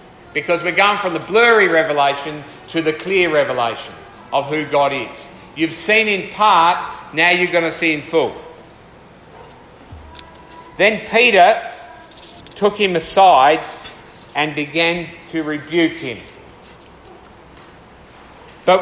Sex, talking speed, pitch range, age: male, 120 wpm, 145-180 Hz, 50-69